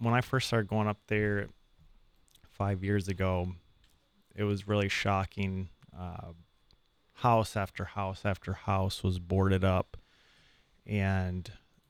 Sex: male